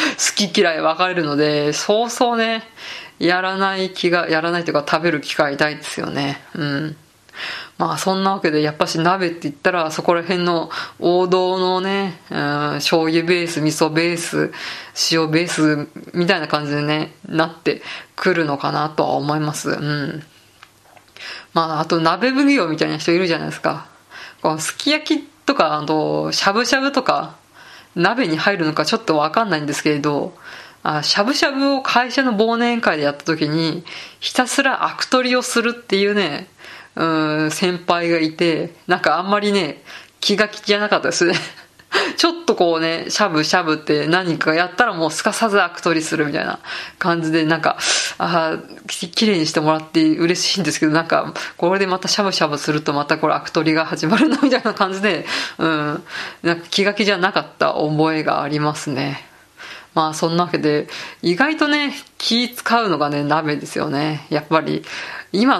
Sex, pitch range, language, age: female, 155-200 Hz, Japanese, 20-39